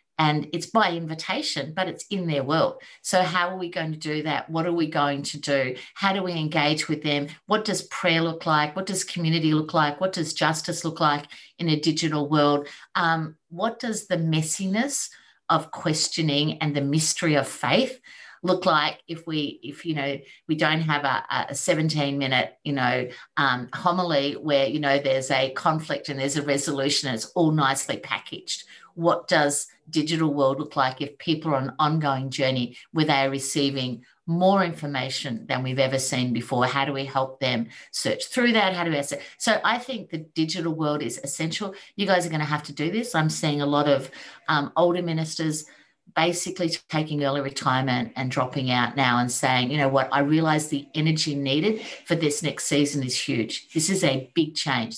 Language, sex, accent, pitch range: English, female, Australian, 140-170 Hz